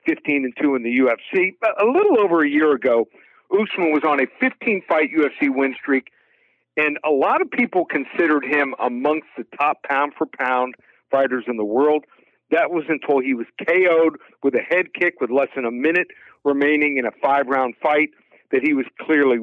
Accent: American